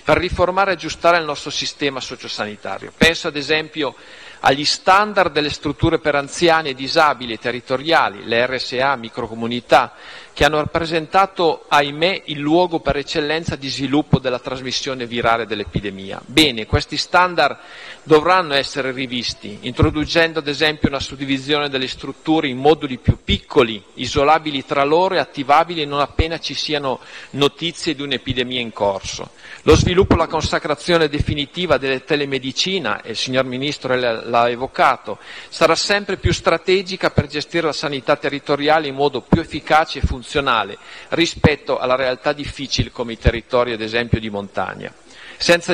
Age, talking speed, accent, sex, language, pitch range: 40-59, 140 wpm, native, male, Italian, 130-160 Hz